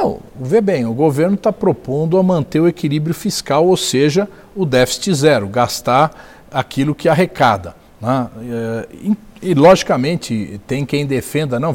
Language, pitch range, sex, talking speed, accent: English, 135-210 Hz, male, 145 wpm, Brazilian